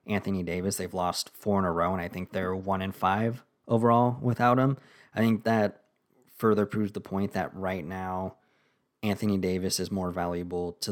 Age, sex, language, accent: 20-39, male, English, American